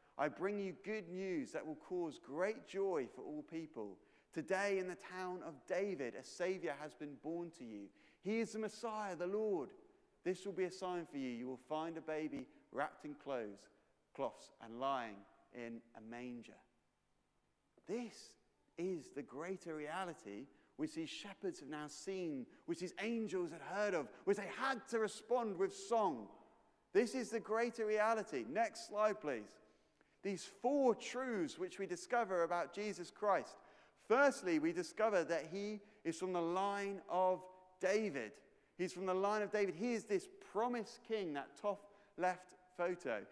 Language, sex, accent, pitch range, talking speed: English, male, British, 180-235 Hz, 165 wpm